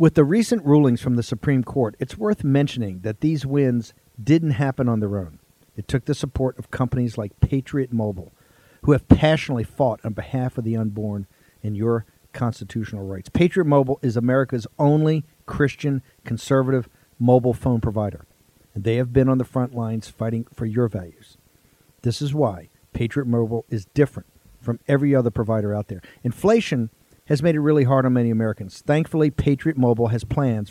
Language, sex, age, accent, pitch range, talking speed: English, male, 50-69, American, 115-145 Hz, 175 wpm